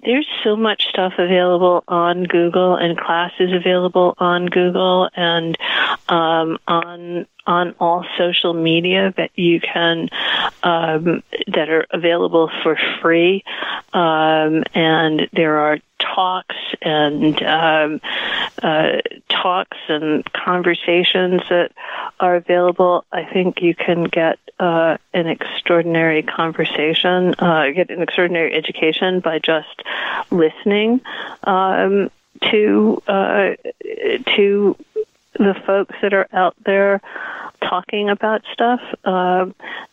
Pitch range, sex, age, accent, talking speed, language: 165-190 Hz, female, 50-69, American, 110 wpm, English